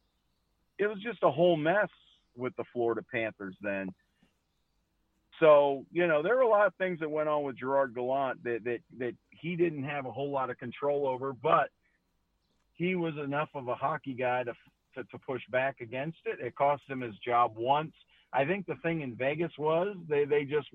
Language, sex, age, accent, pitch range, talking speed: English, male, 50-69, American, 120-145 Hz, 200 wpm